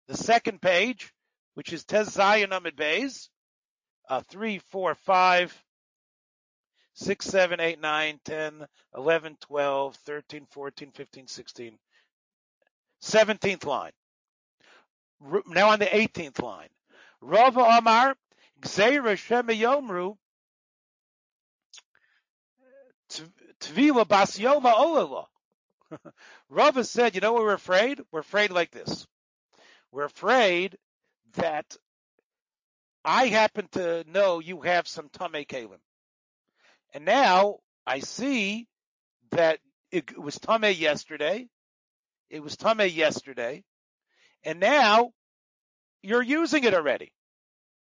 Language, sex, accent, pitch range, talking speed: English, male, American, 165-240 Hz, 100 wpm